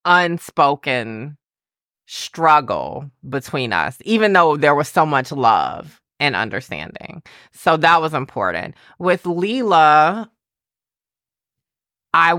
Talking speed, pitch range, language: 95 wpm, 140-170 Hz, English